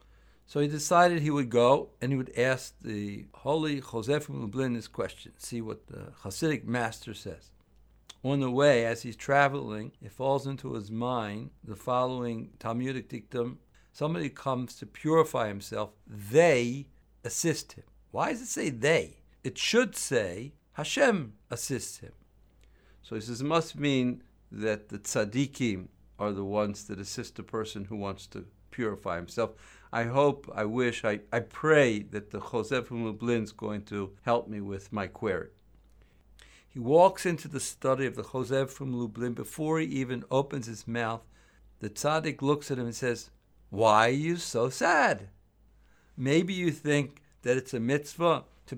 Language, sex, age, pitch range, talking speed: English, male, 60-79, 105-140 Hz, 165 wpm